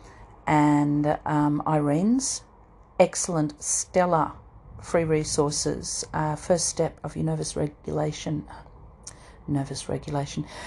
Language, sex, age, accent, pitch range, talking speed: English, female, 40-59, Australian, 150-180 Hz, 90 wpm